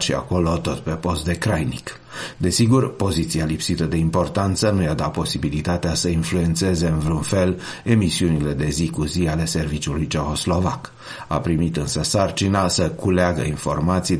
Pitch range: 80-95 Hz